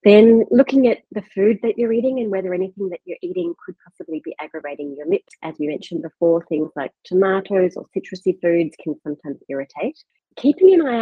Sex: female